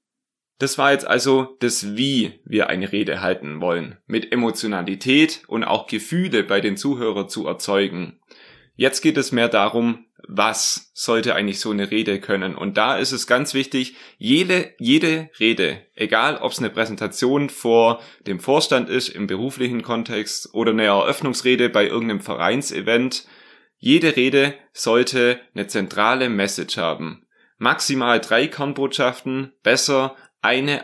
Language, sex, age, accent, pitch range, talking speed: German, male, 30-49, German, 110-135 Hz, 140 wpm